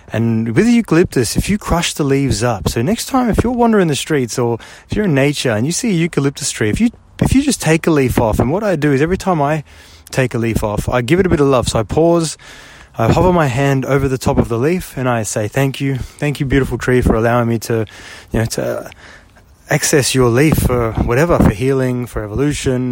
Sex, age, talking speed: male, 20-39, 250 wpm